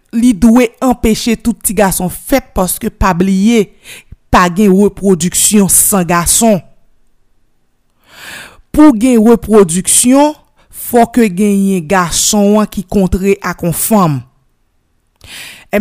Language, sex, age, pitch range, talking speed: French, female, 50-69, 175-235 Hz, 105 wpm